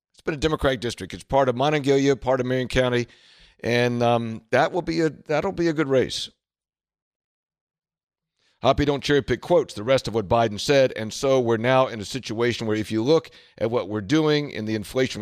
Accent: American